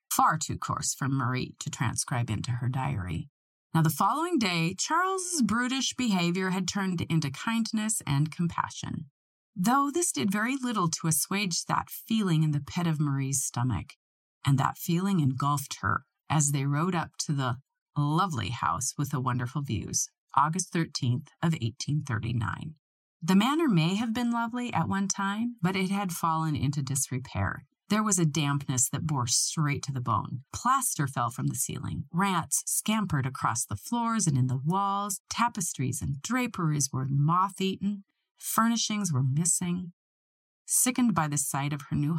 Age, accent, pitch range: 30-49, American, 135-195 Hz